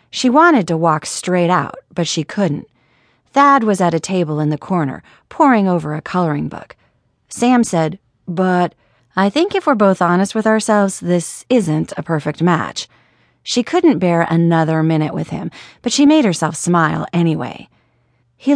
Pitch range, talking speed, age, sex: 155-210 Hz, 170 wpm, 30-49, female